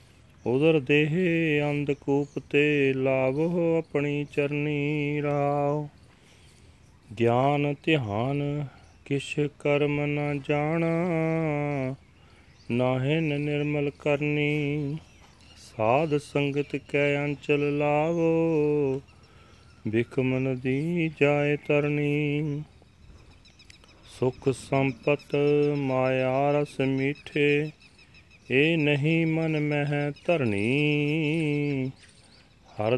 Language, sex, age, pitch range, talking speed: Punjabi, male, 40-59, 130-150 Hz, 70 wpm